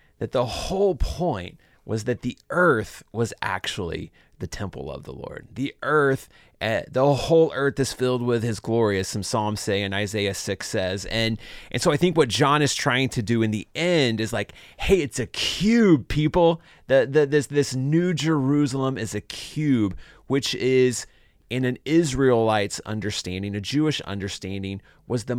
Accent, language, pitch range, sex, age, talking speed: American, English, 100-135 Hz, male, 30-49, 175 wpm